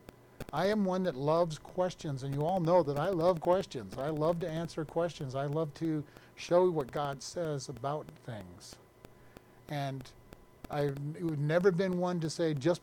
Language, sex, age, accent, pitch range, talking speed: English, male, 50-69, American, 140-185 Hz, 170 wpm